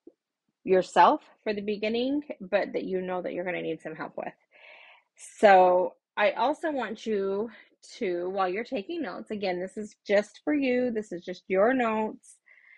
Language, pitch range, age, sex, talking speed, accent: English, 185-235 Hz, 30-49, female, 175 wpm, American